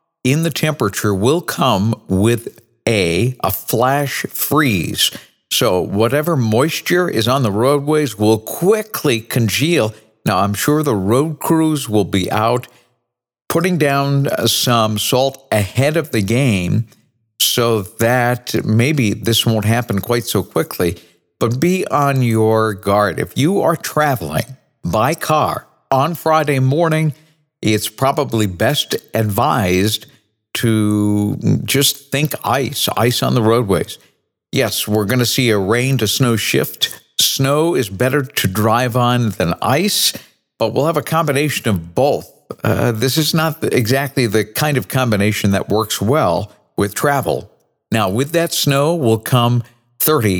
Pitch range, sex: 105-145 Hz, male